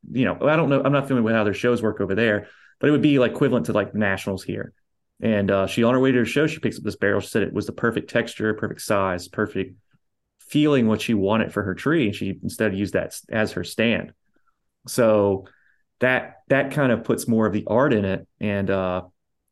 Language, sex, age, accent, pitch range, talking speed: English, male, 30-49, American, 100-115 Hz, 240 wpm